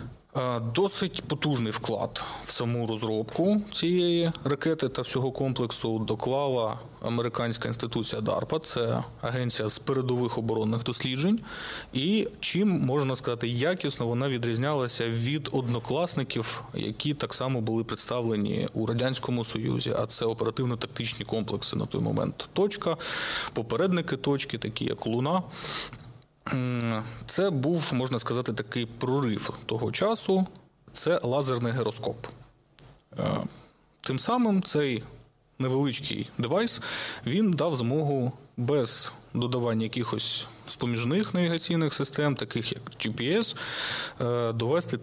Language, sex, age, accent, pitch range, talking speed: Ukrainian, male, 30-49, native, 115-150 Hz, 105 wpm